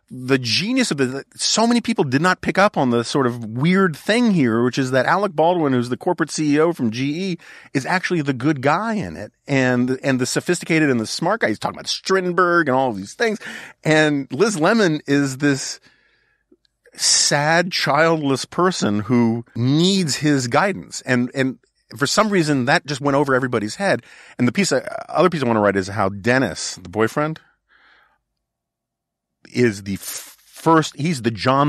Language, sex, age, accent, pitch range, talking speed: English, male, 40-59, American, 110-155 Hz, 185 wpm